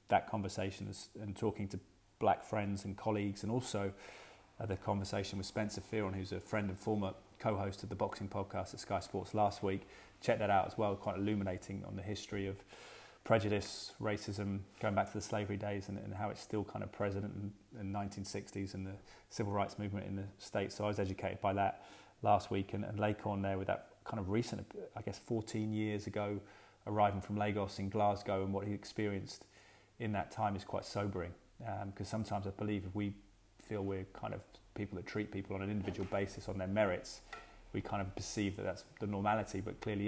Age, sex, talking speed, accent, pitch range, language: 20-39, male, 210 wpm, British, 100-105 Hz, English